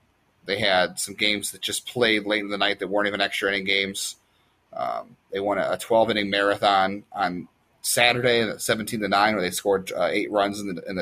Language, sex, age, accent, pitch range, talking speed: English, male, 30-49, American, 95-110 Hz, 190 wpm